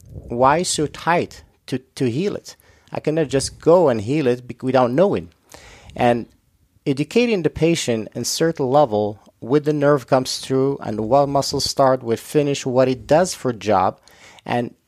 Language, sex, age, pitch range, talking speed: English, male, 40-59, 120-150 Hz, 170 wpm